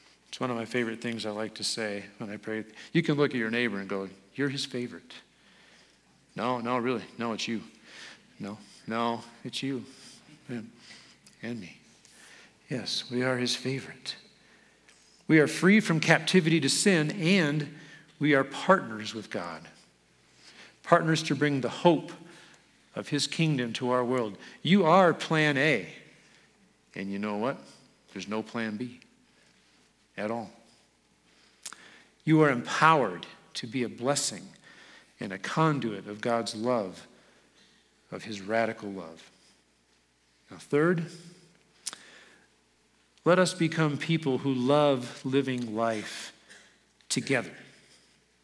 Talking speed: 135 wpm